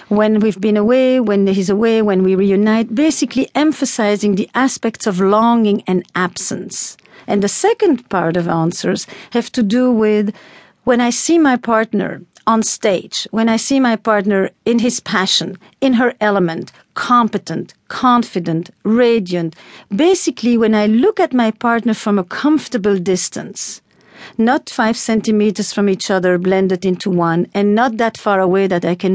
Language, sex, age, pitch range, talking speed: English, female, 50-69, 200-240 Hz, 160 wpm